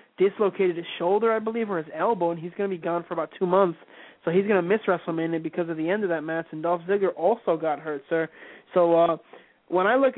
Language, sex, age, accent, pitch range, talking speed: English, male, 20-39, American, 165-195 Hz, 240 wpm